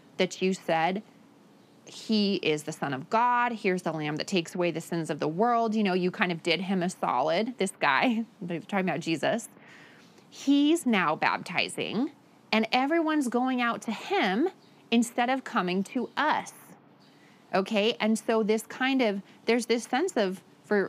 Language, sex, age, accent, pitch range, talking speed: English, female, 30-49, American, 180-235 Hz, 170 wpm